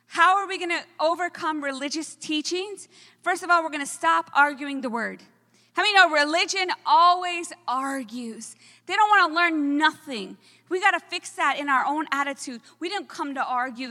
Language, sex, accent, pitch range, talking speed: English, female, American, 270-350 Hz, 180 wpm